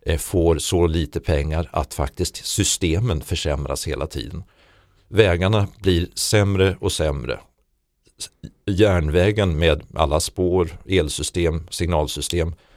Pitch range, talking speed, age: 80-100 Hz, 100 wpm, 50-69